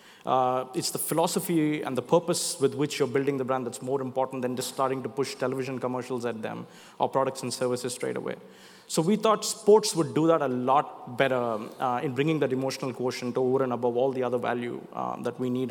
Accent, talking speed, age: Indian, 225 wpm, 20-39